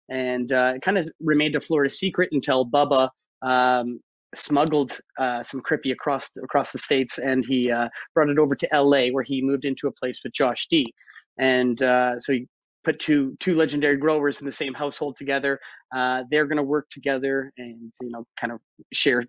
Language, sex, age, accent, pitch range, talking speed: English, male, 30-49, American, 130-150 Hz, 195 wpm